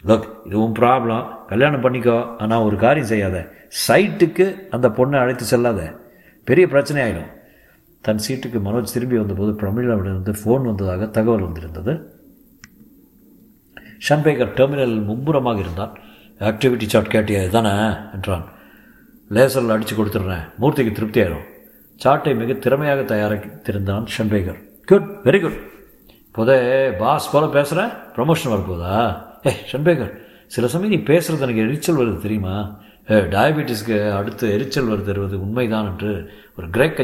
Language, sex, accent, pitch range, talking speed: Tamil, male, native, 105-140 Hz, 130 wpm